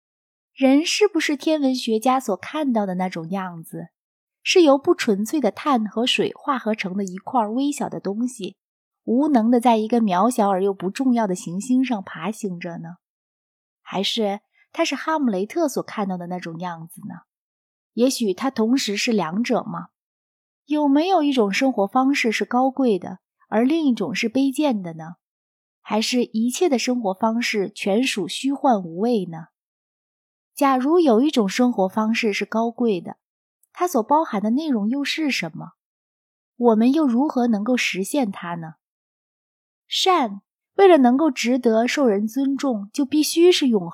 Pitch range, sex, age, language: 195-275 Hz, female, 20-39, Chinese